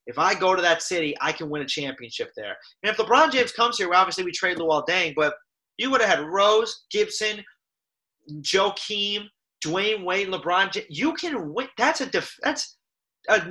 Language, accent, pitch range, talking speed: English, American, 155-225 Hz, 195 wpm